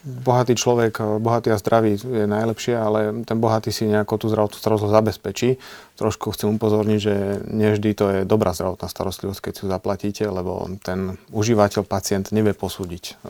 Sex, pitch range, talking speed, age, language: male, 95-105 Hz, 165 wpm, 30-49, Slovak